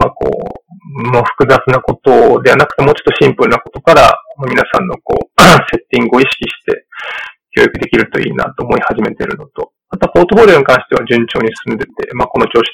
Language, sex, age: Japanese, male, 20-39